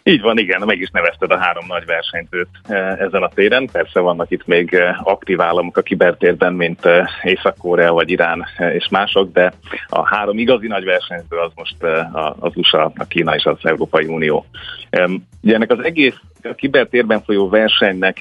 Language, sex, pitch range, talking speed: Hungarian, male, 85-105 Hz, 170 wpm